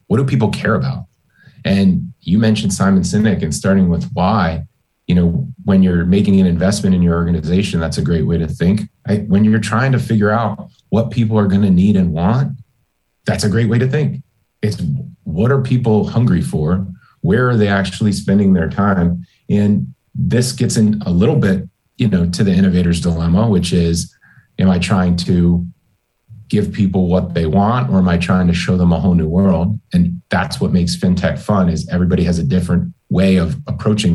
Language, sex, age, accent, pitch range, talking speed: English, male, 30-49, American, 90-105 Hz, 195 wpm